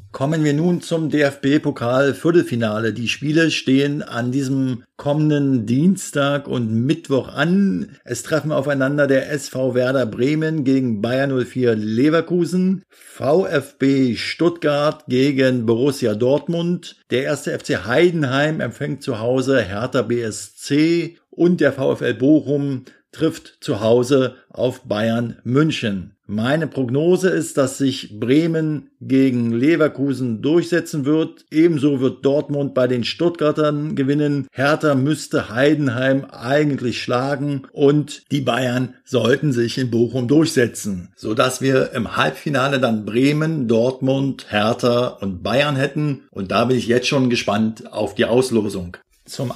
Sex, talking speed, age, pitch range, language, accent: male, 125 wpm, 50-69, 120-150 Hz, German, German